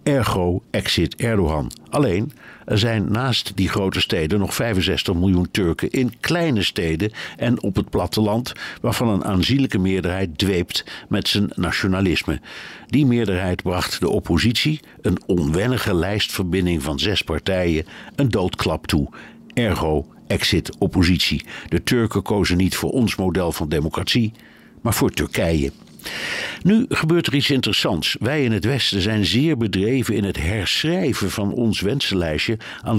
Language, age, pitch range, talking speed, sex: Dutch, 60-79, 90-120 Hz, 140 wpm, male